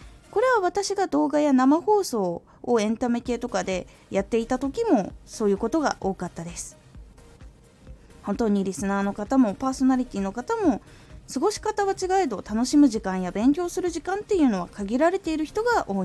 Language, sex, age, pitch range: Japanese, female, 20-39, 190-295 Hz